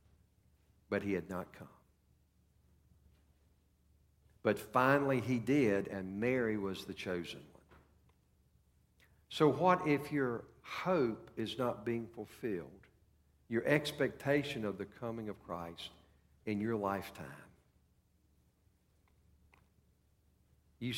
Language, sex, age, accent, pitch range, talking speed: English, male, 60-79, American, 85-135 Hz, 100 wpm